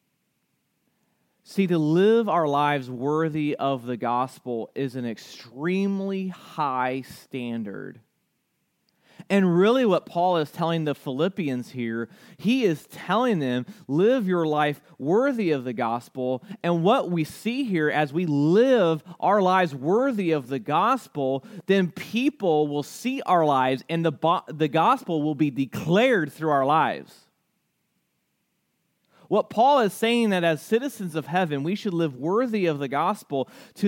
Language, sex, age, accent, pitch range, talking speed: English, male, 30-49, American, 145-200 Hz, 140 wpm